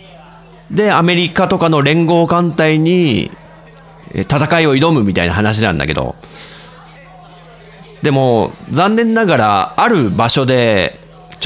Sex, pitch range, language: male, 125-185 Hz, Japanese